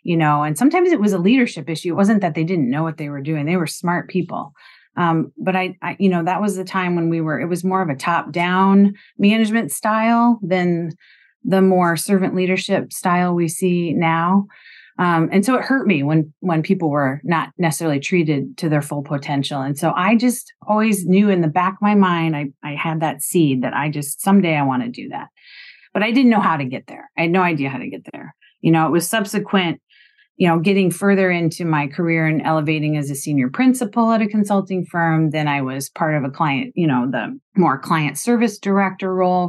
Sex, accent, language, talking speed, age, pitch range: female, American, English, 225 wpm, 30-49, 155-190 Hz